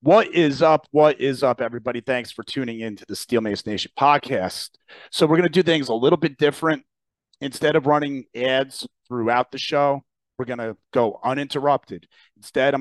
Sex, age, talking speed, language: male, 40-59, 190 wpm, English